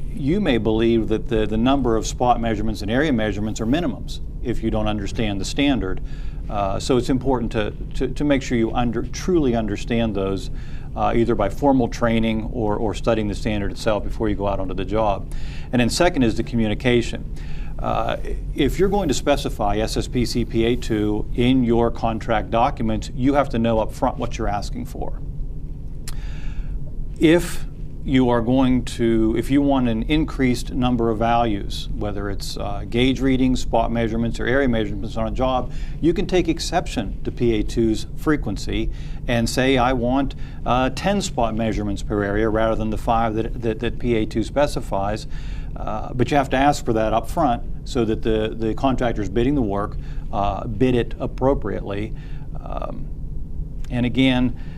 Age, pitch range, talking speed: 50-69, 110-130 Hz, 170 wpm